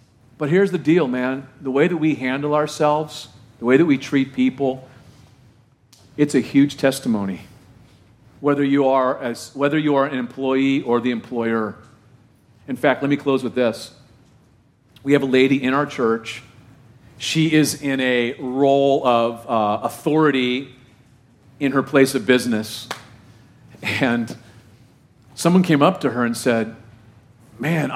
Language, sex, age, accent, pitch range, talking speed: English, male, 50-69, American, 120-150 Hz, 140 wpm